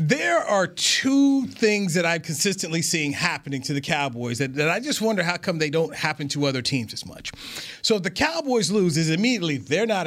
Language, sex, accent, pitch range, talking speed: English, male, American, 150-215 Hz, 215 wpm